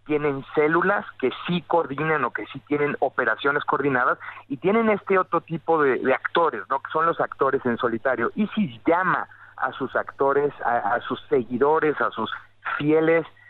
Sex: male